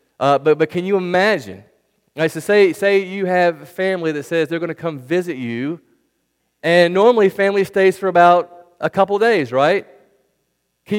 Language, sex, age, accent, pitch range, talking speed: English, male, 40-59, American, 130-185 Hz, 180 wpm